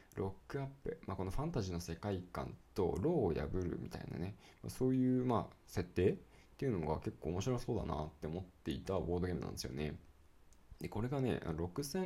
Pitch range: 85-120 Hz